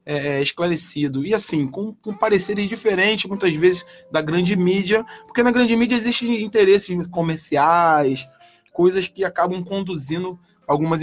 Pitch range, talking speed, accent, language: 150-205 Hz, 130 wpm, Brazilian, Portuguese